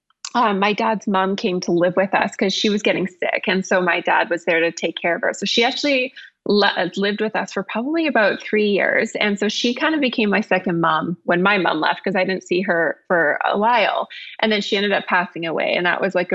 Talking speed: 250 wpm